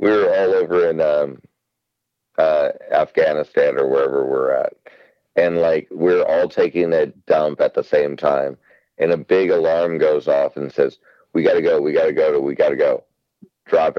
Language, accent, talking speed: English, American, 195 wpm